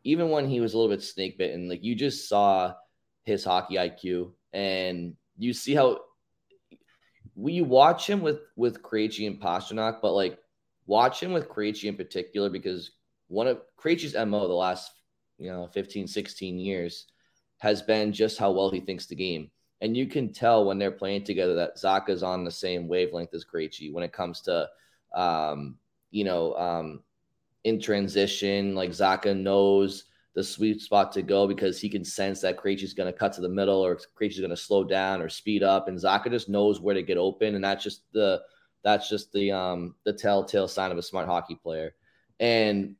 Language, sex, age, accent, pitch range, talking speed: English, male, 20-39, American, 90-110 Hz, 190 wpm